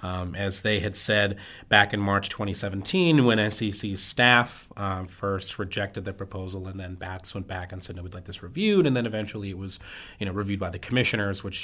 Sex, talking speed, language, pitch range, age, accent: male, 215 wpm, English, 95-110 Hz, 30-49, American